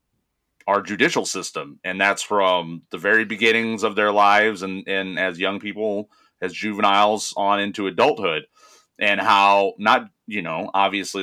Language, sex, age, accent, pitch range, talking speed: English, male, 30-49, American, 95-110 Hz, 150 wpm